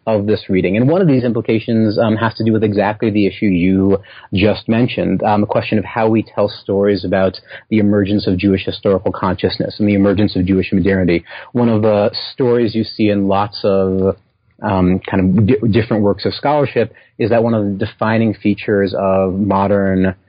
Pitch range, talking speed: 100-115 Hz, 190 wpm